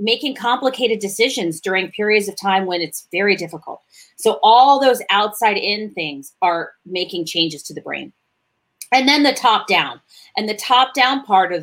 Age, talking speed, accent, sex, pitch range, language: 30-49, 160 wpm, American, female, 175-220 Hz, English